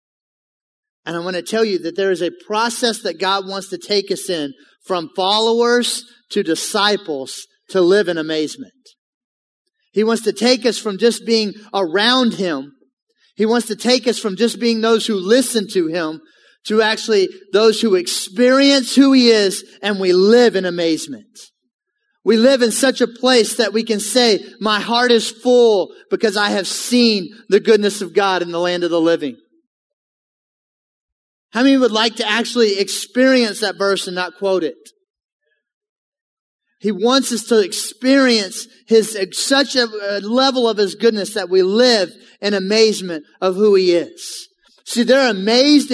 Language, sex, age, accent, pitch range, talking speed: English, male, 30-49, American, 195-245 Hz, 165 wpm